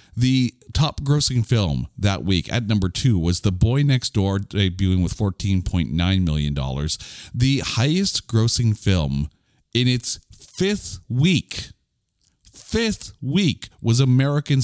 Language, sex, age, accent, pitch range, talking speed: English, male, 40-59, American, 90-130 Hz, 125 wpm